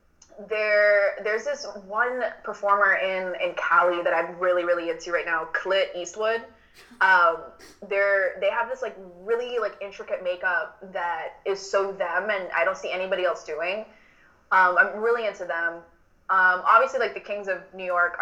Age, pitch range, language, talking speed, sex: 20-39, 170-230 Hz, English, 170 wpm, female